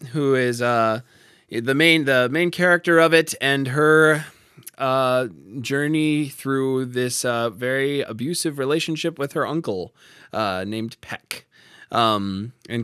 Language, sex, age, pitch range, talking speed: English, male, 20-39, 115-160 Hz, 130 wpm